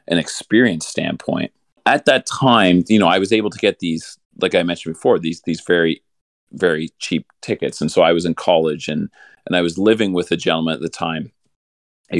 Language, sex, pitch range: English, male, 80-110 Hz